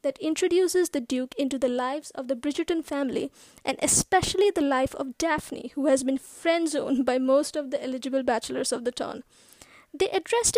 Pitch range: 270-345 Hz